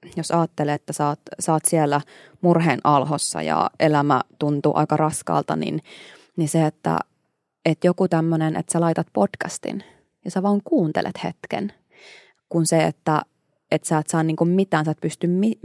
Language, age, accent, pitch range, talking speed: Finnish, 20-39, native, 150-180 Hz, 165 wpm